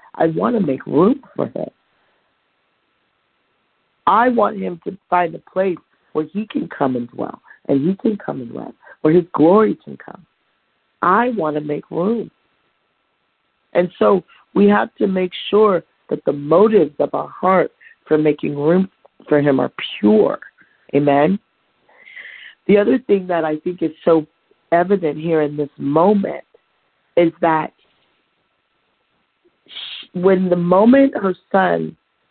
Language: English